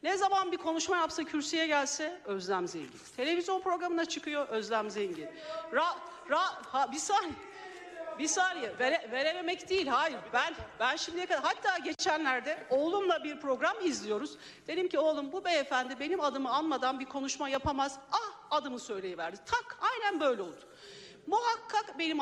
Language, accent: Turkish, native